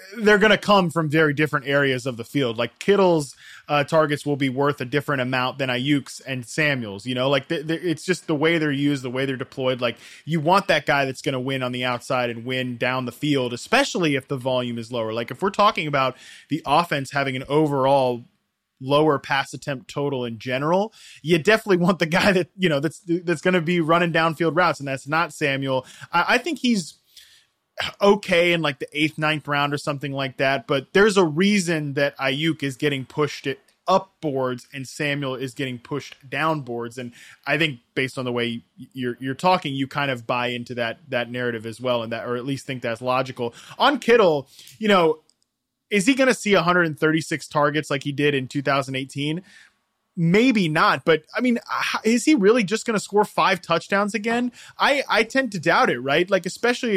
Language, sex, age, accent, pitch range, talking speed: English, male, 20-39, American, 130-180 Hz, 210 wpm